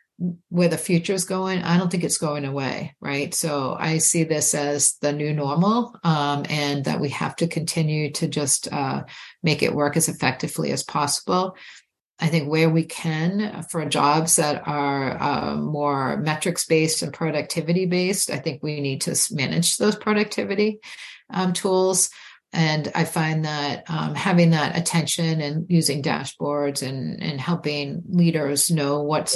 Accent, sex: American, female